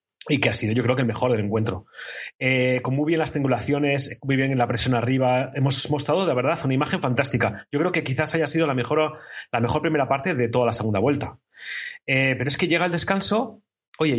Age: 30-49